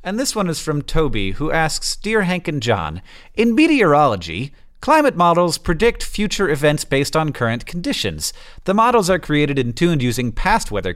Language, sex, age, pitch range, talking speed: English, male, 40-59, 115-170 Hz, 175 wpm